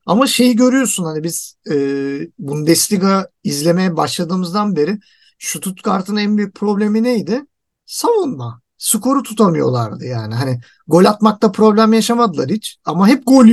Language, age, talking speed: Turkish, 50-69, 135 wpm